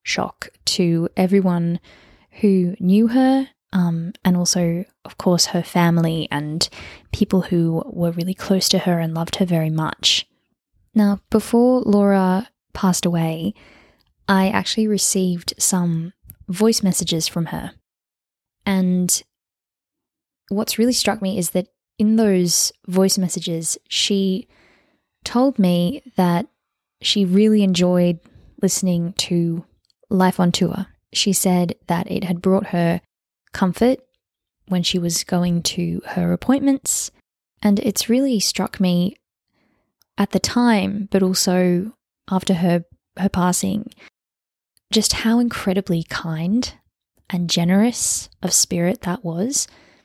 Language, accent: English, Australian